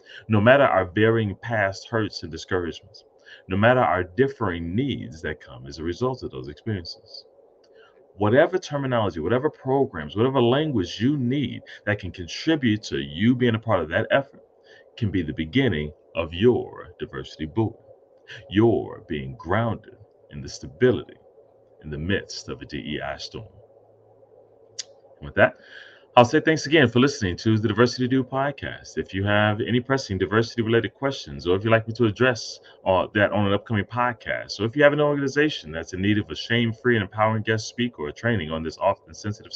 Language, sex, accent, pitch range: English, male, American, 95-130 Hz